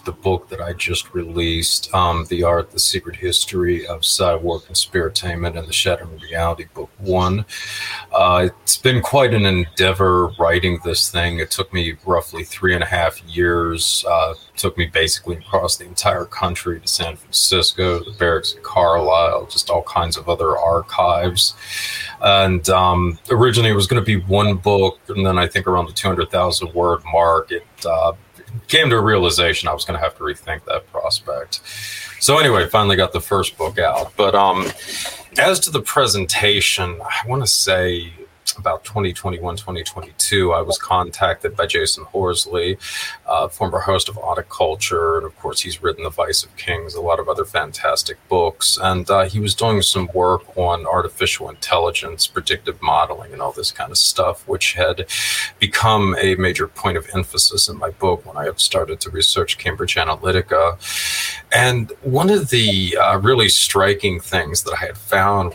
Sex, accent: male, American